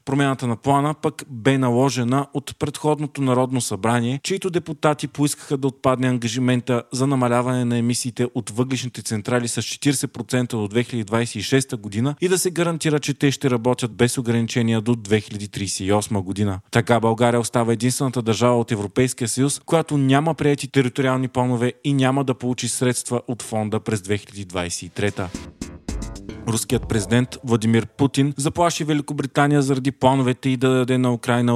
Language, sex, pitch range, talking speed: Bulgarian, male, 115-140 Hz, 145 wpm